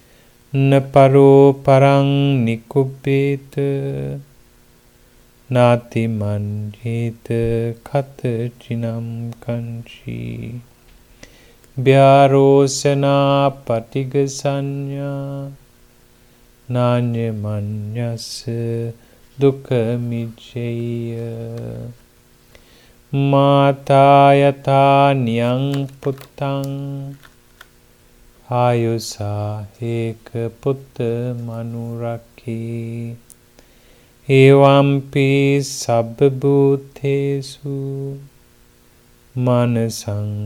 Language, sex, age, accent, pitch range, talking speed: English, male, 30-49, Indian, 115-140 Hz, 40 wpm